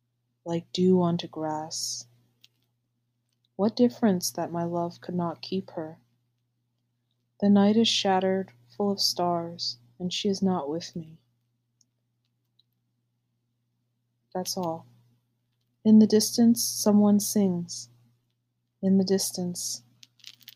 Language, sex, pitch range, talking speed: English, female, 120-180 Hz, 105 wpm